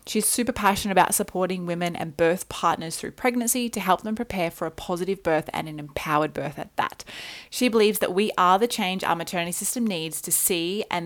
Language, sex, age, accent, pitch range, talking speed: English, female, 20-39, Australian, 175-215 Hz, 210 wpm